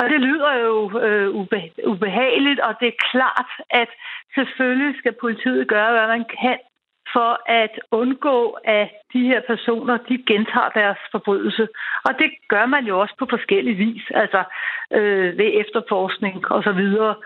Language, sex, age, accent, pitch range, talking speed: Danish, female, 60-79, native, 215-260 Hz, 140 wpm